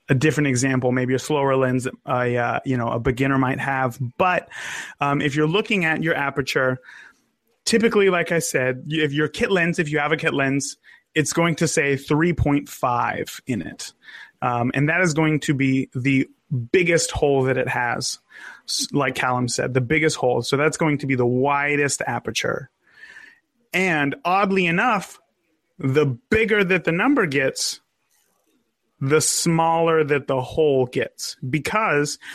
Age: 30-49